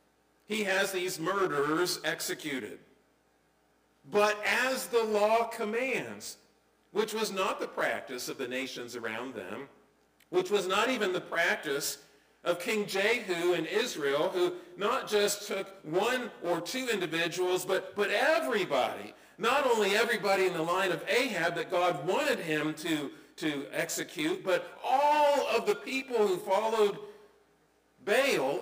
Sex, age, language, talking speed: male, 50-69, English, 135 wpm